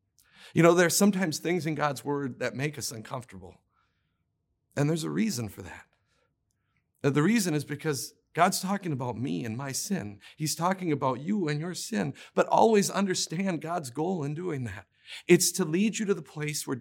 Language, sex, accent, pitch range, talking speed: English, male, American, 135-185 Hz, 190 wpm